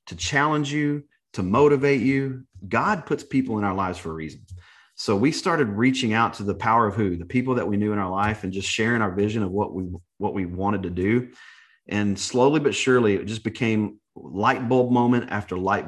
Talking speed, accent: 220 wpm, American